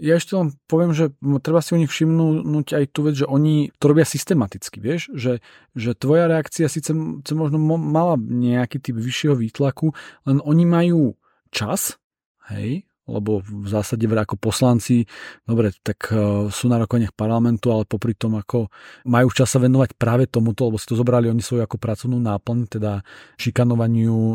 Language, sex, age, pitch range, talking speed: Slovak, male, 40-59, 115-135 Hz, 170 wpm